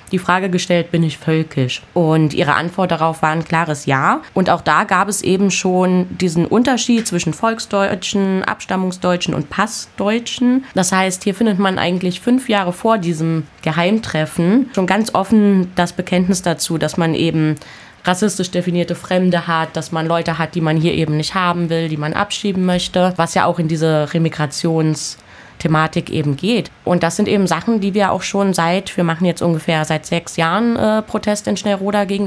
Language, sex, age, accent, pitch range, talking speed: German, female, 20-39, German, 165-200 Hz, 180 wpm